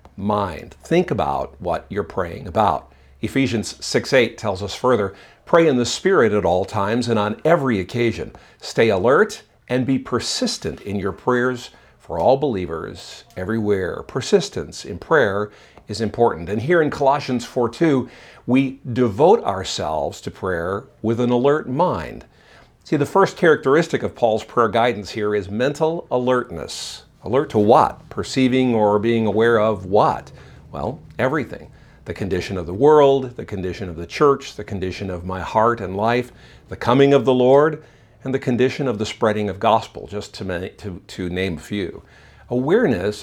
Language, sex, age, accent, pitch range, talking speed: English, male, 50-69, American, 100-130 Hz, 160 wpm